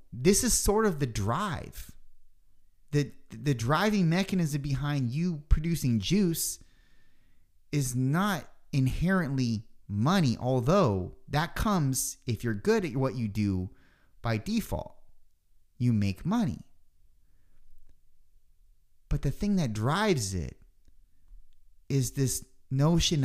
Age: 30-49